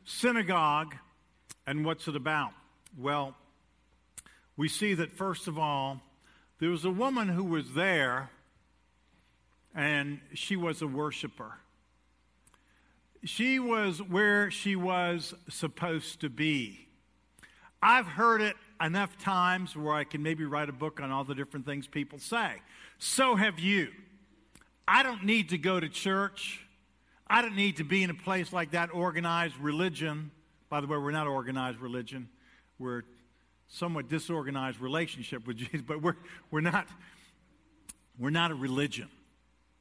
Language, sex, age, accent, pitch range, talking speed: English, male, 50-69, American, 145-190 Hz, 140 wpm